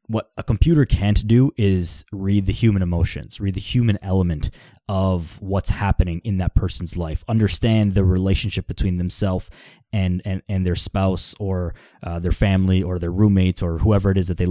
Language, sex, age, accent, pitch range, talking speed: English, male, 20-39, American, 90-110 Hz, 195 wpm